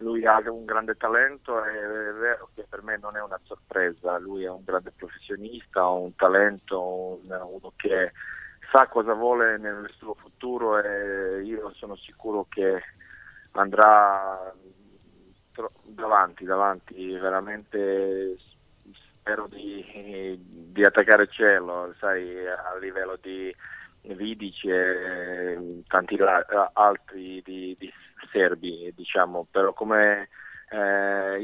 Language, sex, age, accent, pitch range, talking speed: Italian, male, 30-49, native, 95-110 Hz, 120 wpm